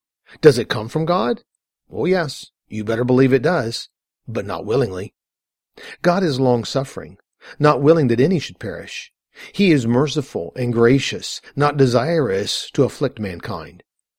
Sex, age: male, 50-69